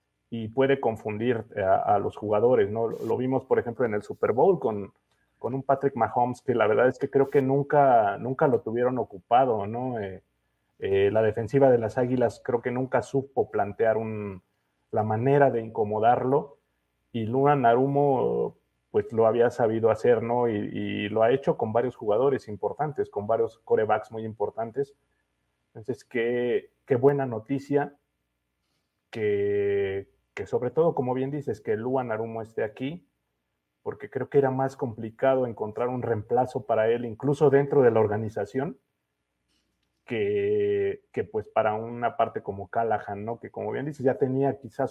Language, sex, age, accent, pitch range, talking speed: English, male, 30-49, Mexican, 105-140 Hz, 165 wpm